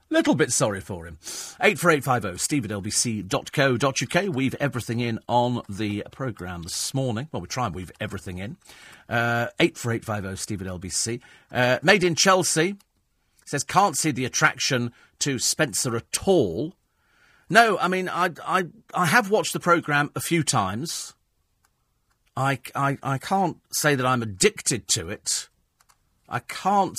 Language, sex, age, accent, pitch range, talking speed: English, male, 40-59, British, 110-150 Hz, 140 wpm